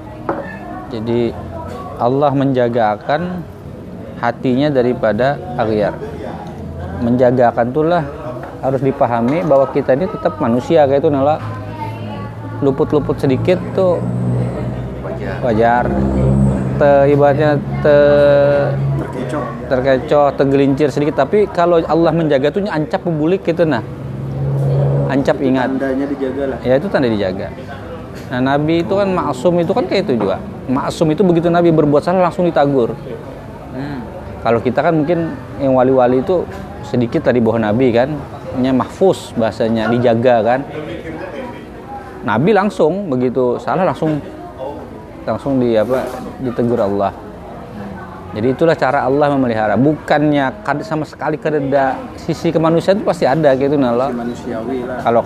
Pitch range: 120-150 Hz